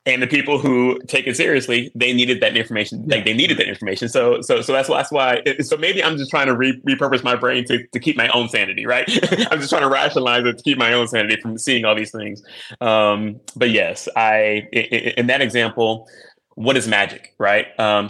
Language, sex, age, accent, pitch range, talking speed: English, male, 20-39, American, 110-125 Hz, 230 wpm